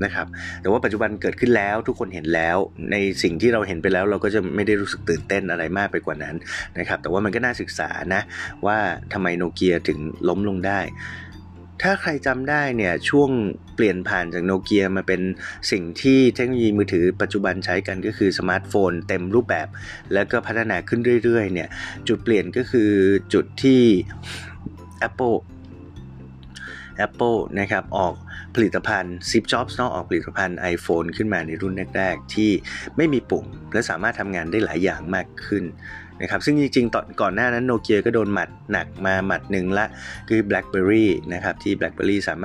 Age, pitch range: 30-49, 90-110 Hz